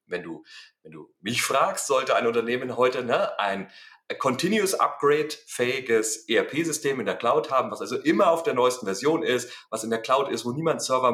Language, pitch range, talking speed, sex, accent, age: German, 120-160 Hz, 180 wpm, male, German, 30-49